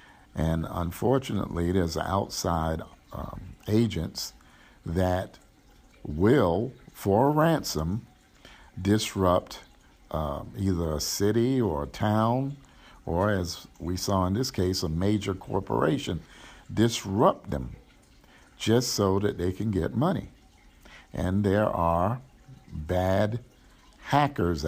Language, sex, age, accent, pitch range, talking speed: English, male, 50-69, American, 85-110 Hz, 105 wpm